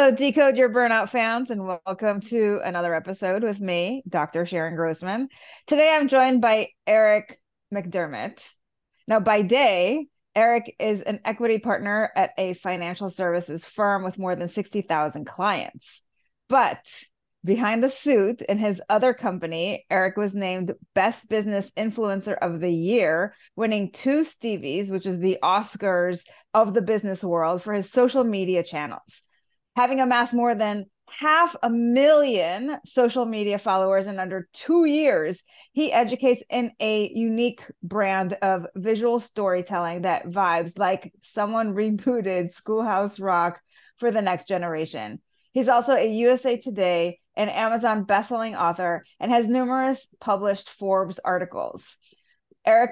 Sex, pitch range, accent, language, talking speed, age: female, 185-240 Hz, American, English, 140 wpm, 30-49